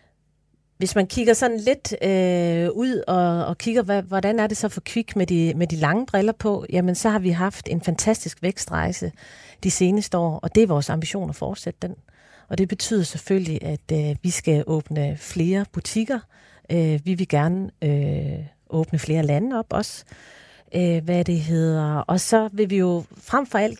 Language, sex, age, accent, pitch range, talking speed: Danish, female, 30-49, native, 165-200 Hz, 190 wpm